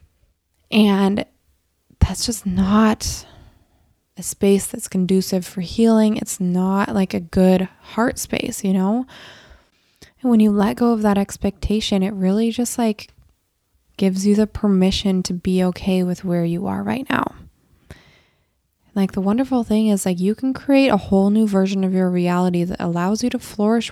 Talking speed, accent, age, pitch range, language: 165 wpm, American, 20-39, 185-215 Hz, English